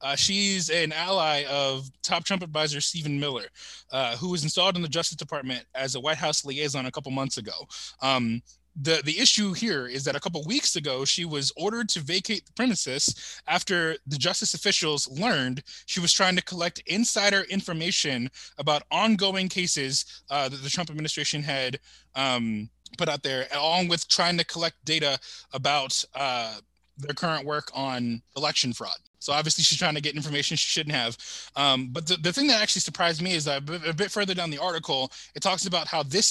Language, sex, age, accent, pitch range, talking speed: English, male, 20-39, American, 135-180 Hz, 190 wpm